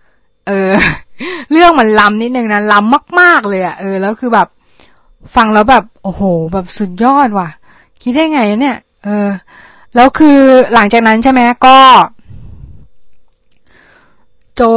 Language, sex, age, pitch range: Thai, female, 20-39, 190-240 Hz